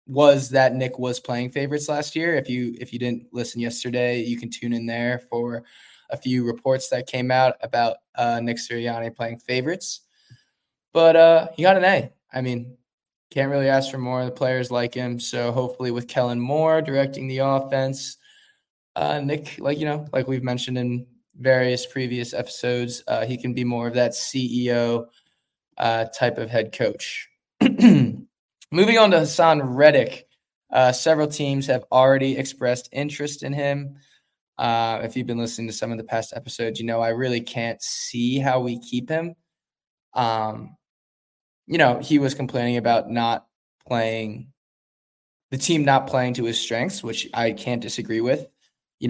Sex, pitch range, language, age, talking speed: male, 120-135 Hz, English, 20-39, 170 wpm